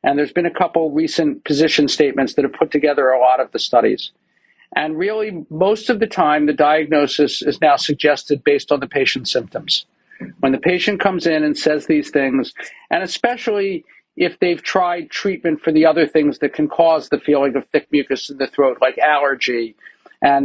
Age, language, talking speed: 50-69, English, 195 wpm